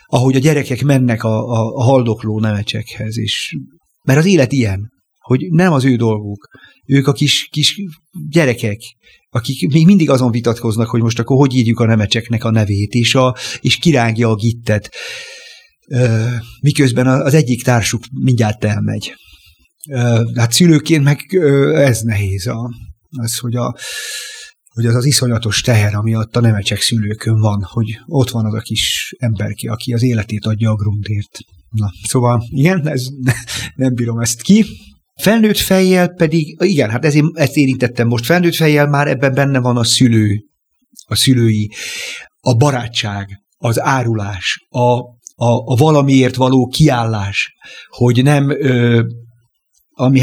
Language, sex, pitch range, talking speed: Hungarian, male, 115-140 Hz, 145 wpm